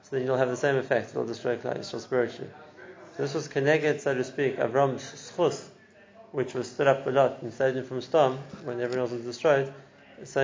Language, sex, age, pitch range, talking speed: English, male, 30-49, 125-145 Hz, 200 wpm